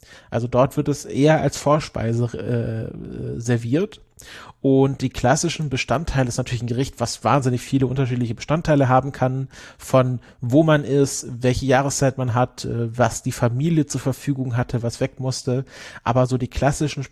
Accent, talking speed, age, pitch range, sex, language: German, 160 wpm, 40-59, 120-140 Hz, male, German